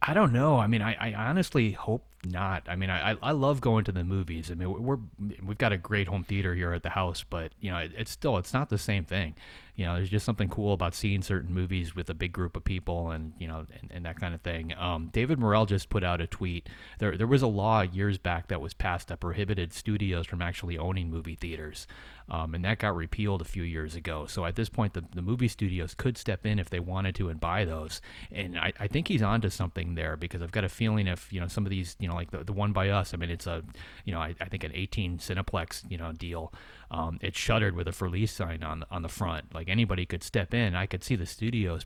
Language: English